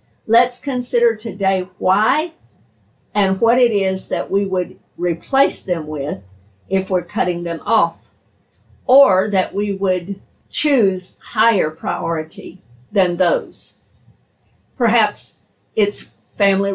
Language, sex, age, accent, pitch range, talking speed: English, female, 50-69, American, 180-235 Hz, 110 wpm